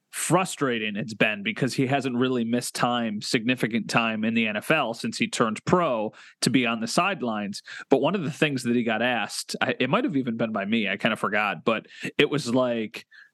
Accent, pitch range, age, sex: American, 120-150 Hz, 30-49, male